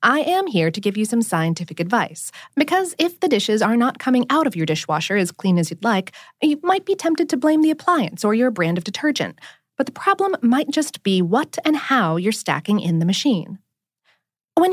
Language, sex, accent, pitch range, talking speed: English, female, American, 185-290 Hz, 215 wpm